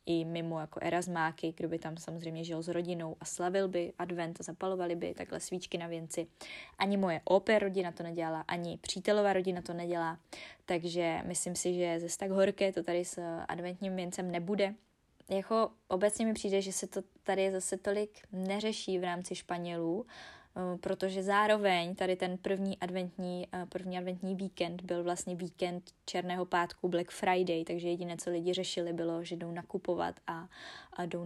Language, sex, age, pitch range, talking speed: Czech, female, 20-39, 175-190 Hz, 165 wpm